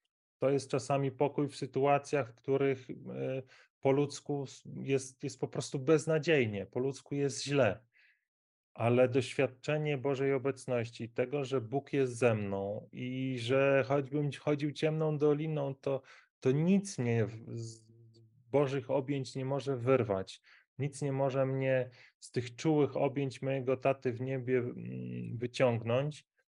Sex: male